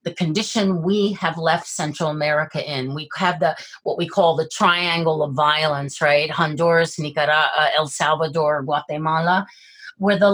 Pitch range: 170-265 Hz